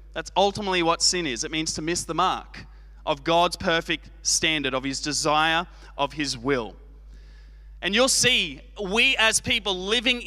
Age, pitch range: 20-39, 150-220 Hz